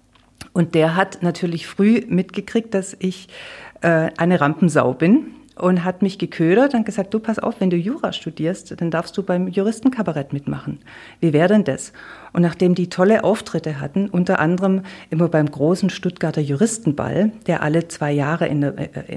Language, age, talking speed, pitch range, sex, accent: German, 50-69, 170 wpm, 160-200 Hz, female, German